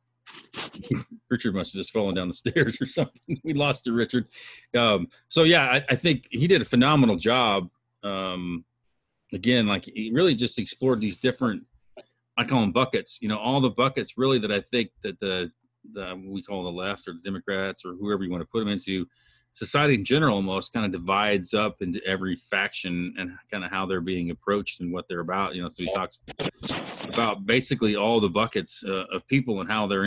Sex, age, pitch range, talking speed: male, 40-59, 95-120 Hz, 205 wpm